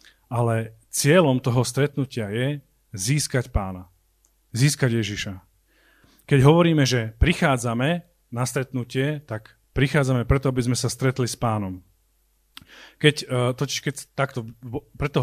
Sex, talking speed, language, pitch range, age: male, 115 wpm, Slovak, 110-135 Hz, 40-59